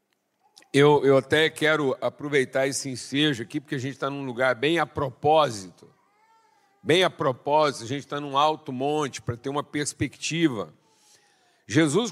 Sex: male